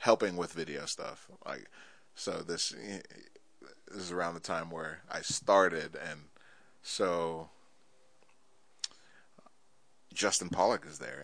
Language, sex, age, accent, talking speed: English, male, 30-49, American, 110 wpm